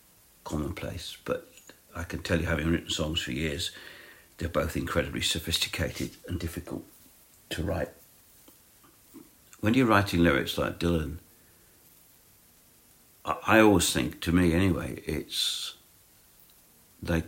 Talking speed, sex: 120 wpm, male